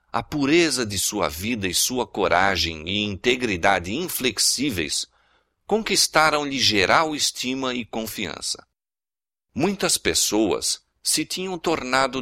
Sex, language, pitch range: male, Portuguese, 95-135 Hz